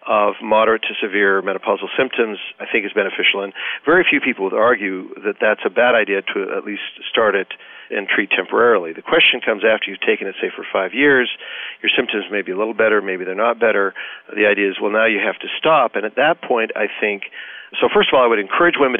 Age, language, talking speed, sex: 50-69, English, 235 wpm, male